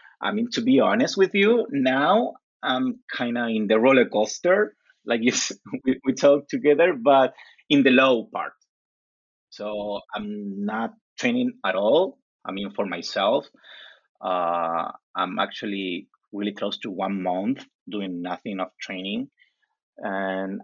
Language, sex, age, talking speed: English, male, 30-49, 135 wpm